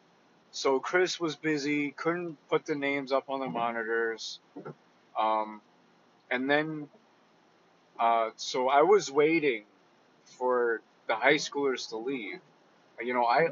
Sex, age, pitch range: male, 30-49, 135-180 Hz